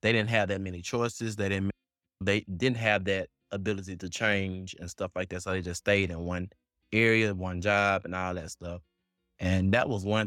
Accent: American